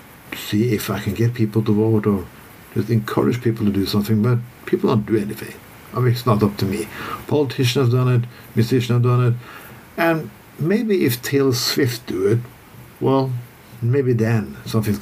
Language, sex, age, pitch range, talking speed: English, male, 50-69, 110-130 Hz, 185 wpm